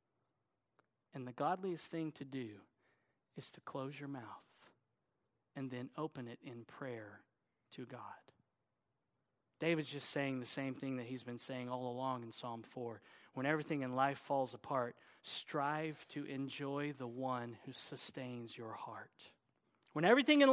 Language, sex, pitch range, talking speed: English, male, 130-200 Hz, 150 wpm